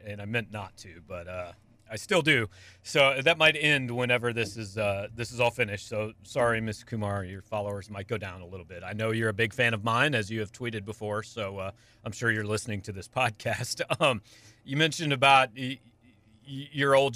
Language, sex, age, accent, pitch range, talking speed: English, male, 40-59, American, 115-155 Hz, 225 wpm